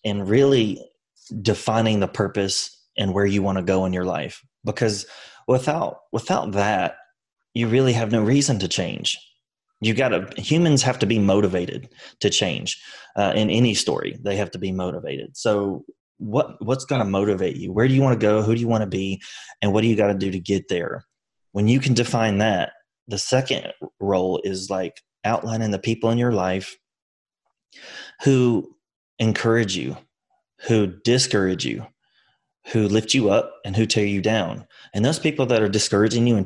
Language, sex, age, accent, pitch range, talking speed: English, male, 30-49, American, 100-120 Hz, 185 wpm